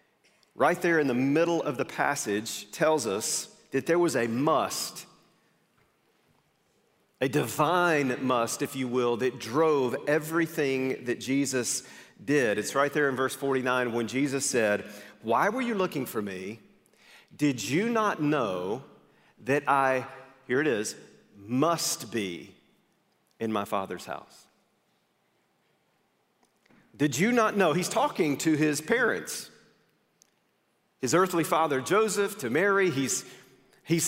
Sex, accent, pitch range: male, American, 130-170 Hz